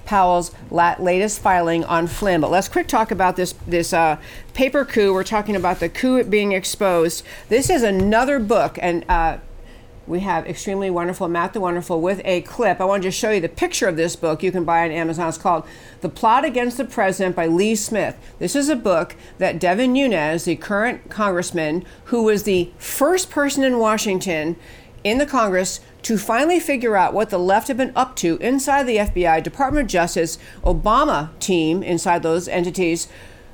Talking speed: 190 wpm